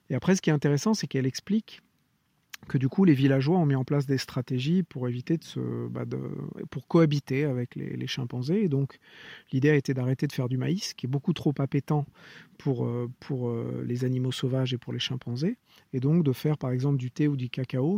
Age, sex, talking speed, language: 40-59, male, 225 wpm, English